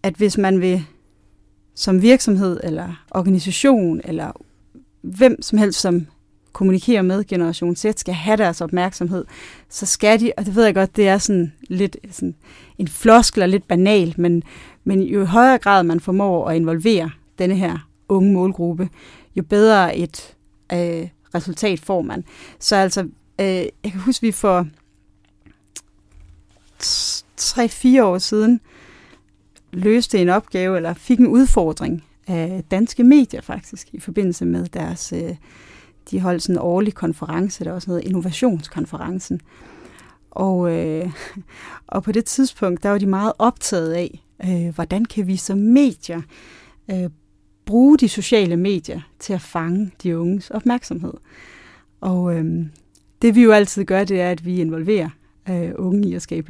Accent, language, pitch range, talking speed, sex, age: native, Danish, 170-210 Hz, 145 wpm, female, 30-49